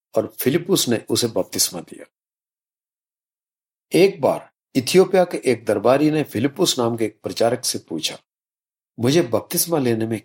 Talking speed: 140 wpm